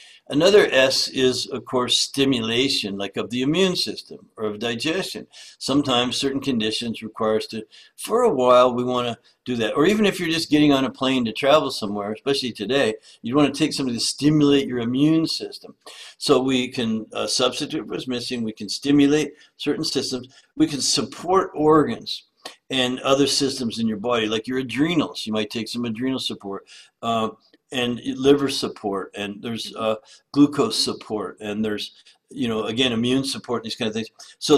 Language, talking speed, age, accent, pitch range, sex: English, 180 wpm, 60-79, American, 110-135 Hz, male